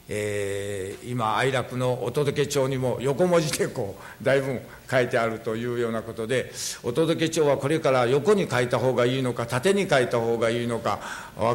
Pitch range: 110-165 Hz